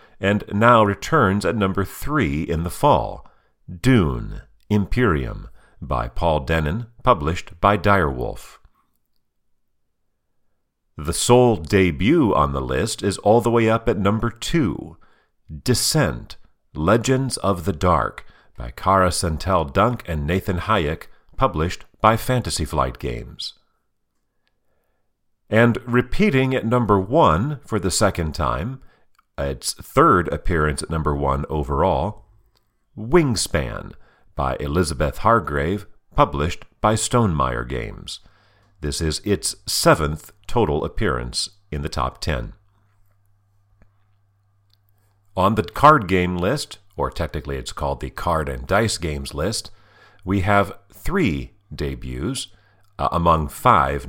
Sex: male